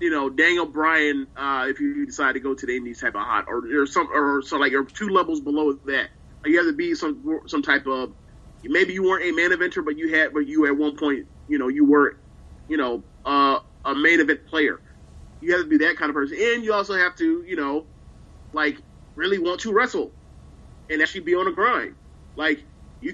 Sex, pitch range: male, 135-180 Hz